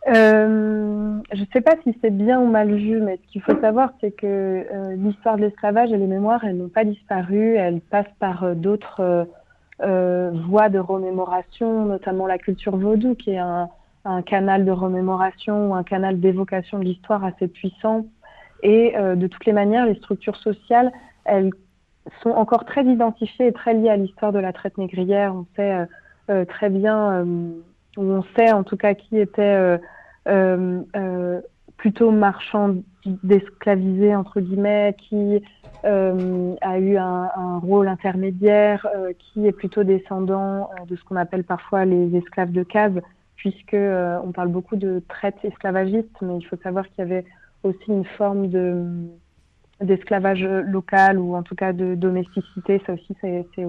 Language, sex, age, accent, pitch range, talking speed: French, female, 30-49, French, 185-210 Hz, 175 wpm